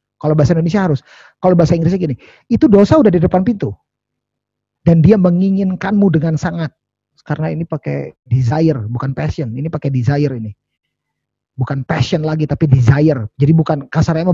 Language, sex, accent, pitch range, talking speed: Indonesian, male, native, 130-180 Hz, 155 wpm